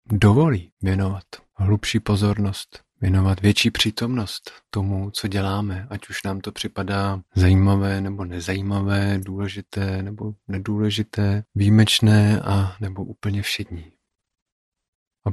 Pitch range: 95-110 Hz